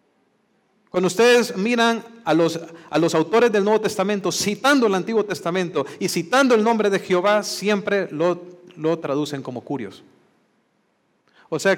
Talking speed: 150 wpm